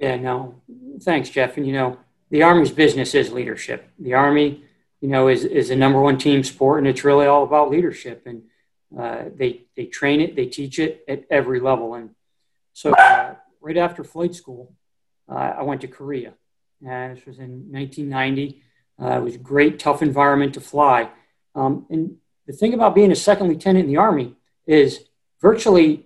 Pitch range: 135-165 Hz